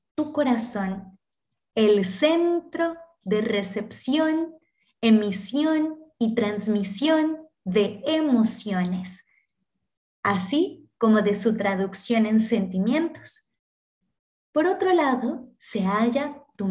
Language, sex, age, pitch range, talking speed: Spanish, female, 20-39, 205-315 Hz, 85 wpm